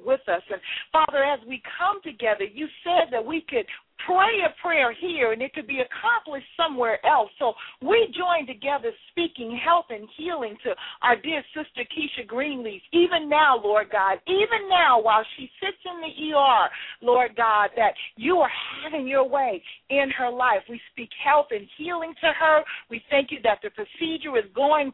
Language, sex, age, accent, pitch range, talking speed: English, female, 50-69, American, 230-325 Hz, 185 wpm